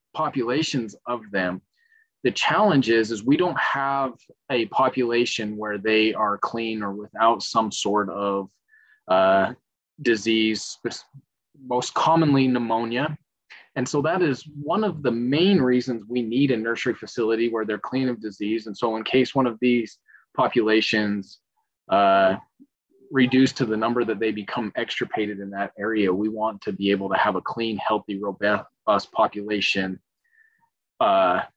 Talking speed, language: 145 wpm, English